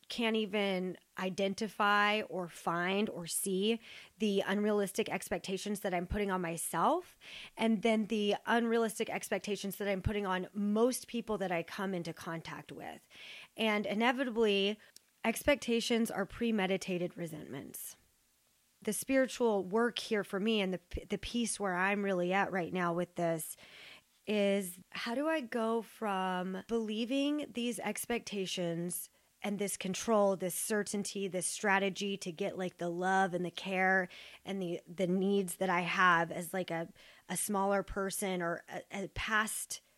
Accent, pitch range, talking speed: American, 185-220 Hz, 145 wpm